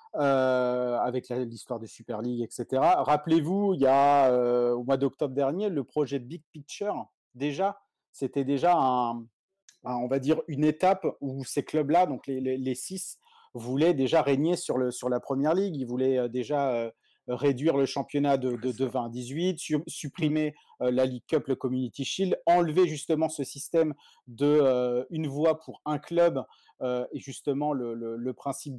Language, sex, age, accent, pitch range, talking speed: French, male, 40-59, French, 125-150 Hz, 180 wpm